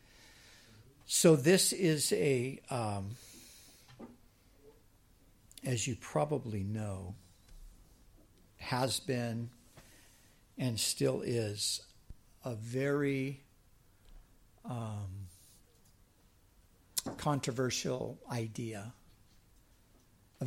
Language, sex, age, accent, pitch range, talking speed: Dutch, male, 60-79, American, 100-130 Hz, 60 wpm